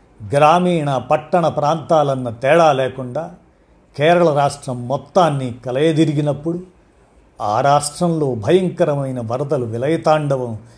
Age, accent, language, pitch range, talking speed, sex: 50-69, native, Telugu, 125-160 Hz, 80 wpm, male